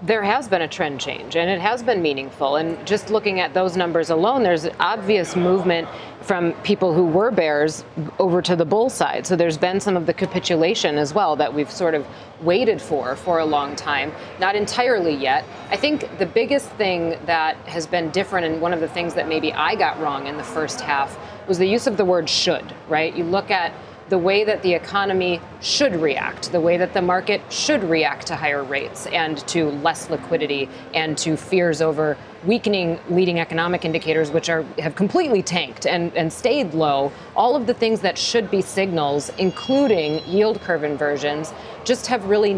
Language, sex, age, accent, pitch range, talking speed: English, female, 40-59, American, 160-195 Hz, 195 wpm